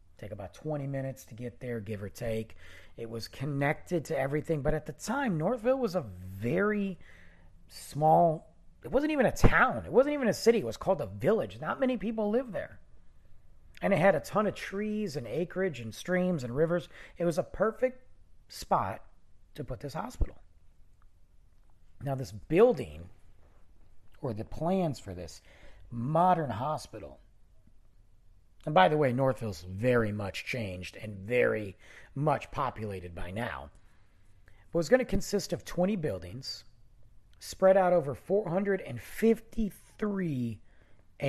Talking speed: 150 wpm